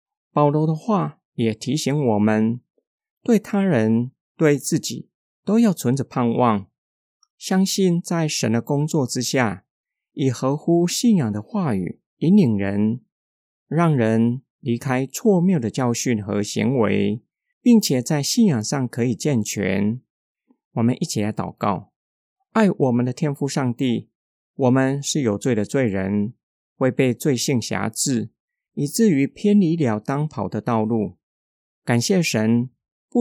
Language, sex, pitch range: Chinese, male, 115-165 Hz